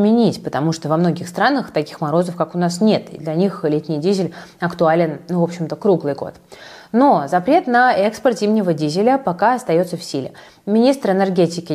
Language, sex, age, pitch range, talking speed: Russian, female, 20-39, 155-205 Hz, 170 wpm